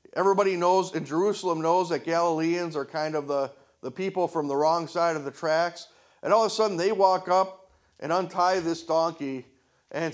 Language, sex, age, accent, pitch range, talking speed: English, male, 50-69, American, 155-205 Hz, 195 wpm